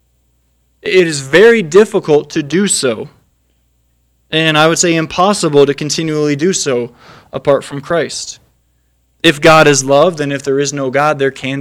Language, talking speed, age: English, 160 wpm, 20-39